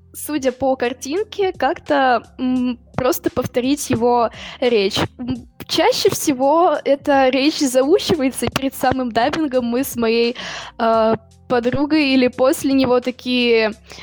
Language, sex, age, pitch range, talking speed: Russian, female, 10-29, 220-265 Hz, 110 wpm